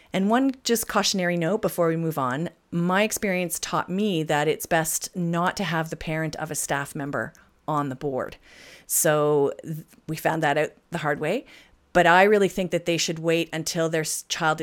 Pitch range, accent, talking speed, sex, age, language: 150-205 Hz, American, 195 wpm, female, 40-59, English